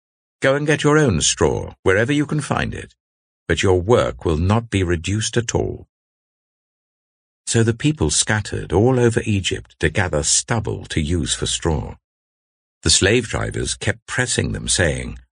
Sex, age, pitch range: male, 60-79, 75-120 Hz